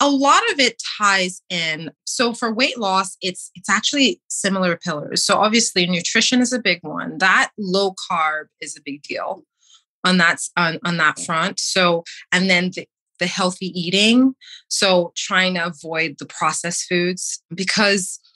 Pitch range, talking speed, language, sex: 165-215 Hz, 165 wpm, English, female